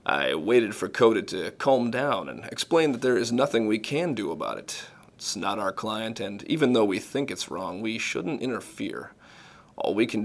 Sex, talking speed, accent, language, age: male, 205 wpm, American, English, 30-49